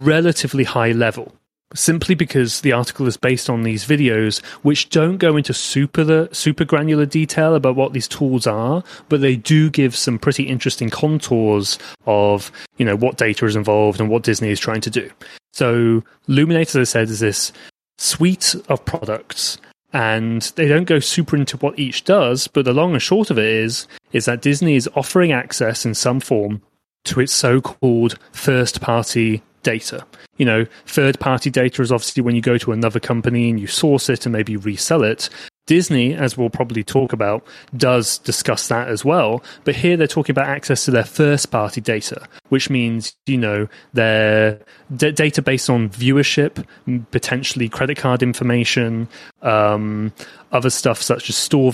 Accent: British